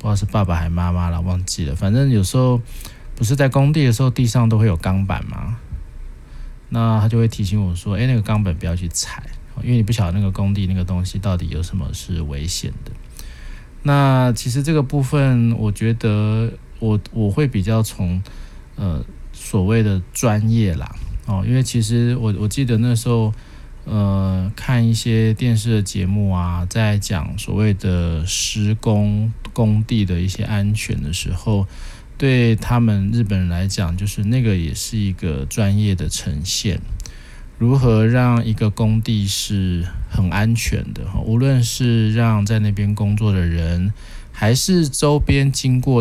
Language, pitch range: Chinese, 95-115 Hz